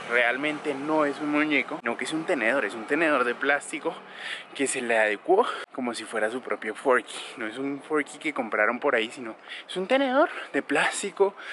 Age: 20-39